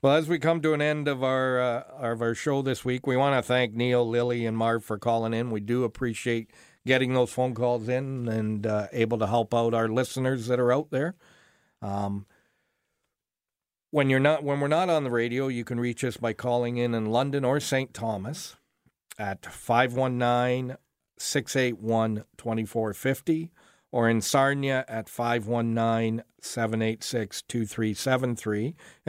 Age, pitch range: 50-69, 115-135 Hz